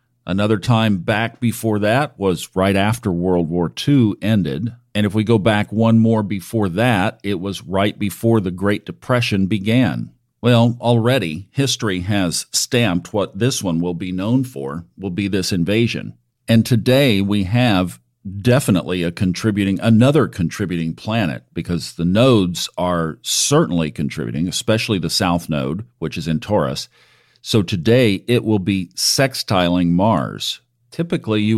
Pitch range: 90-120 Hz